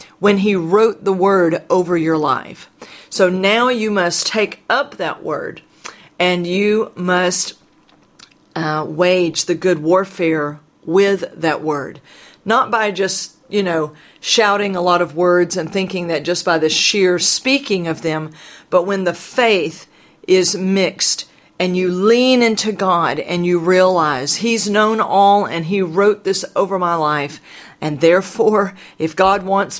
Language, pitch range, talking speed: English, 165-200 Hz, 155 wpm